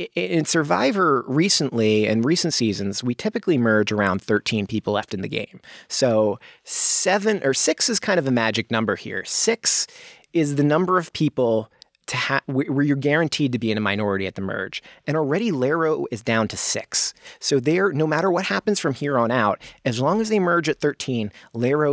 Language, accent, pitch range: English, American, 110-155 Hz